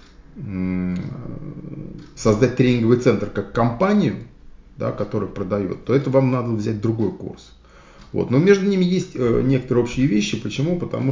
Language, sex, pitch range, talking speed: Russian, male, 105-135 Hz, 140 wpm